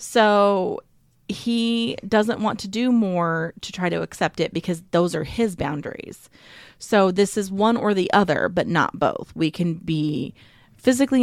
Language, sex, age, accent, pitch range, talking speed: English, female, 30-49, American, 160-215 Hz, 165 wpm